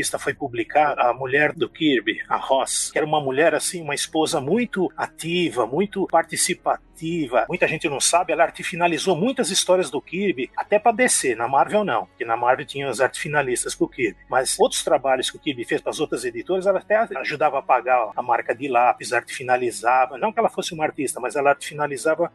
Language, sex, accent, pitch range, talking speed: Portuguese, male, Brazilian, 165-225 Hz, 200 wpm